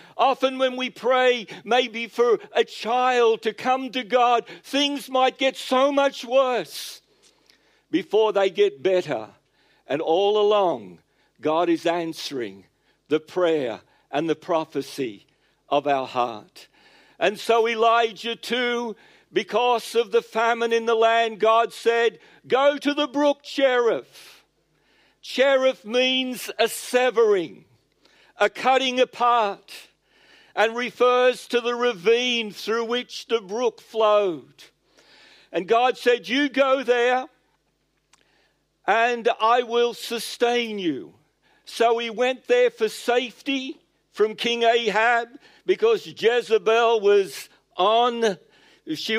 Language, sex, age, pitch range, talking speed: English, male, 60-79, 220-265 Hz, 115 wpm